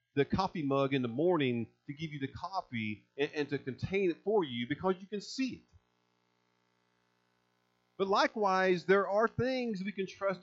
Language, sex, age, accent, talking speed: English, male, 50-69, American, 180 wpm